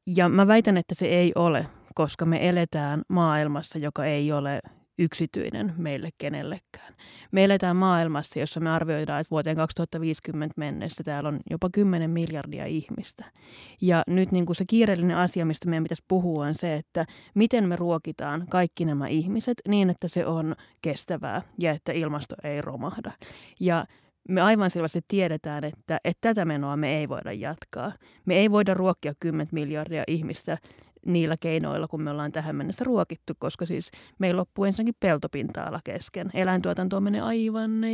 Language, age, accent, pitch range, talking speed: Finnish, 30-49, native, 155-190 Hz, 160 wpm